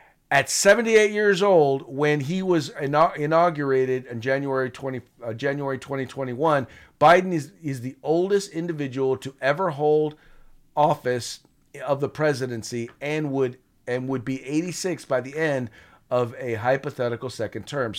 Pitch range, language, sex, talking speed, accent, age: 125-155 Hz, English, male, 130 wpm, American, 40-59